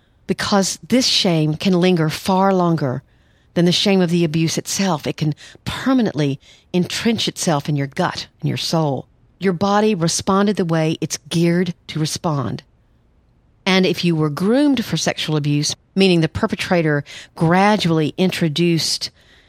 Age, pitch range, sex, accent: 40-59, 150-185 Hz, female, American